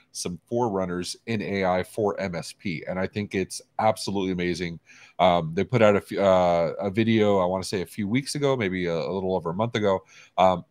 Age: 30-49